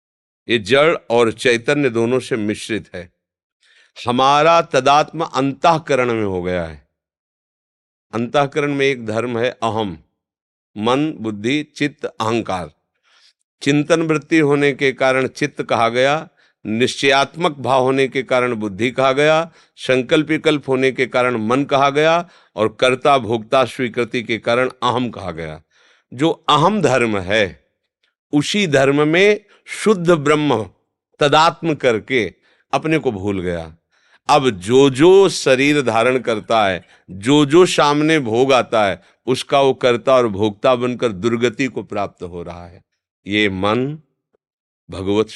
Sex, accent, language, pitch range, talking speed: male, native, Hindi, 105-145 Hz, 130 wpm